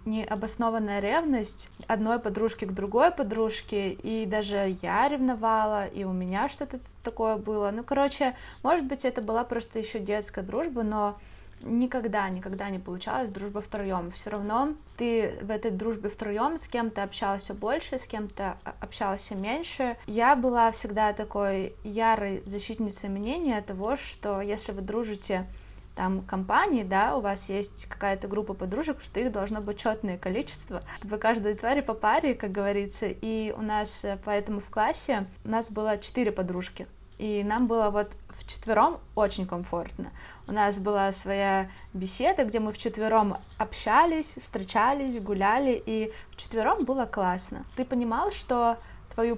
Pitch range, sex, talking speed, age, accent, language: 200-235 Hz, female, 150 wpm, 20-39, native, Russian